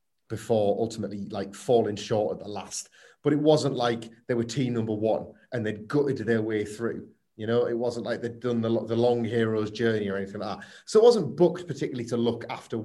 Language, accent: English, British